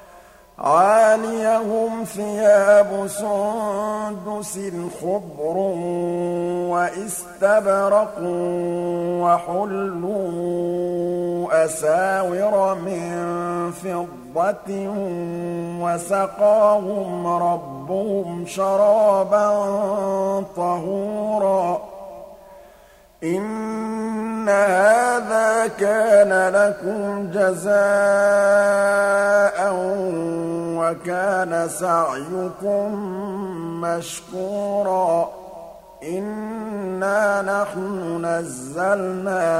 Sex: male